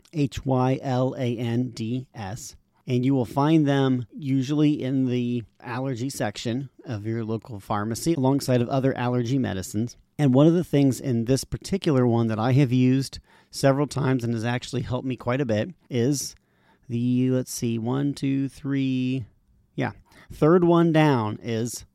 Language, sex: English, male